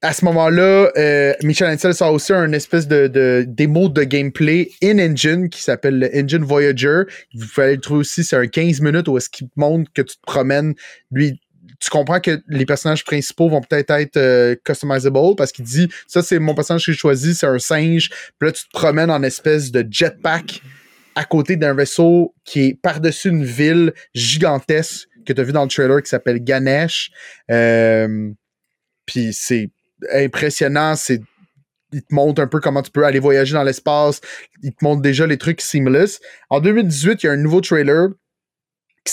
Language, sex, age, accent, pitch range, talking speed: French, male, 30-49, Canadian, 135-170 Hz, 195 wpm